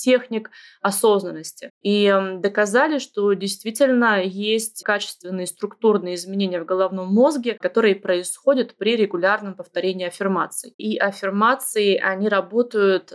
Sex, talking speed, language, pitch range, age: female, 105 wpm, Russian, 195-230 Hz, 20-39